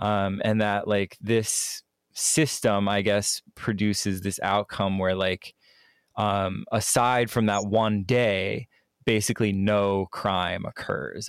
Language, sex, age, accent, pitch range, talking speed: English, male, 20-39, American, 105-120 Hz, 120 wpm